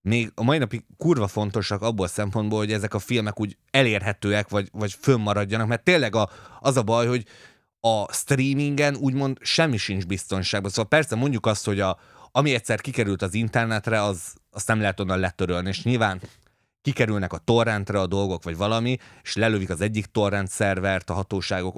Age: 30-49